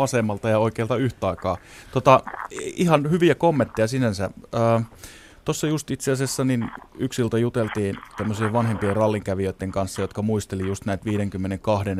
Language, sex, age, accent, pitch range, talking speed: Finnish, male, 20-39, native, 95-115 Hz, 130 wpm